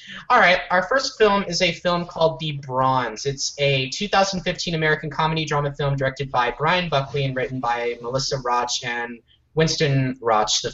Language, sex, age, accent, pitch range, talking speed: English, male, 20-39, American, 130-175 Hz, 170 wpm